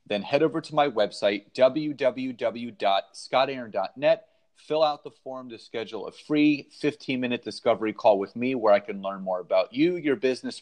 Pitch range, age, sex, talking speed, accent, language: 105-145 Hz, 30-49, male, 170 wpm, American, English